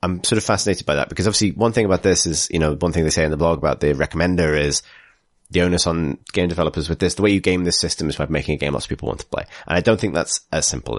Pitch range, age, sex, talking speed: 80-95 Hz, 30-49, male, 310 wpm